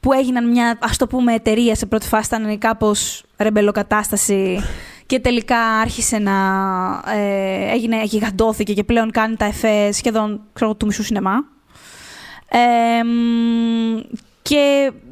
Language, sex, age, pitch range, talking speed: Greek, female, 20-39, 215-270 Hz, 120 wpm